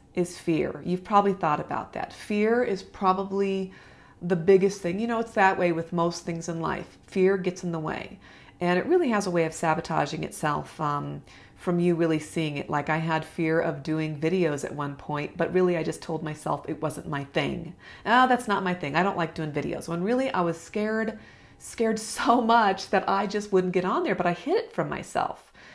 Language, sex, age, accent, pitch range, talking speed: English, female, 40-59, American, 165-195 Hz, 220 wpm